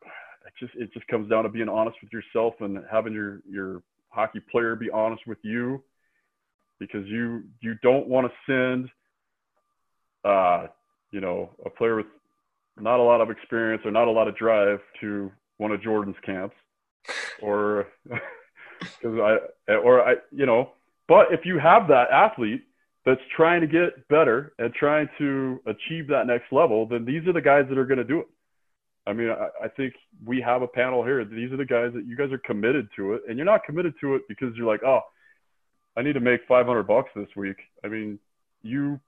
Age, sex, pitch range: 20-39, male, 110-135 Hz